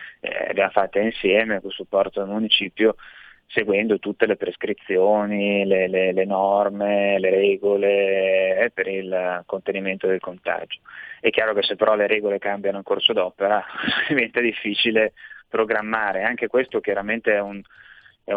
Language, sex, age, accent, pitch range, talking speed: Italian, male, 20-39, native, 95-110 Hz, 145 wpm